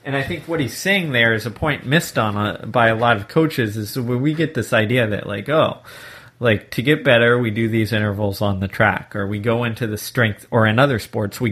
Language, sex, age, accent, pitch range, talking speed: English, male, 30-49, American, 110-130 Hz, 250 wpm